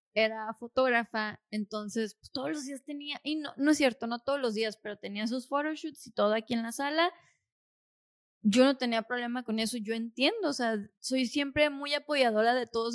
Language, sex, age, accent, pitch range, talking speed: Spanish, female, 20-39, Mexican, 230-285 Hz, 200 wpm